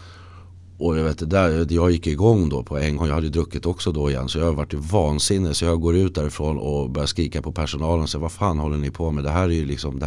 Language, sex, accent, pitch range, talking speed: Swedish, male, native, 80-95 Hz, 285 wpm